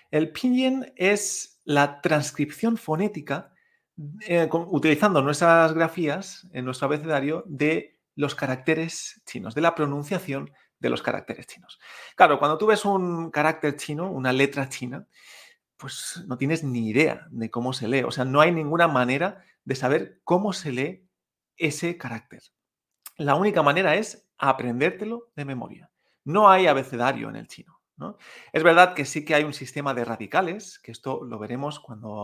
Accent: Spanish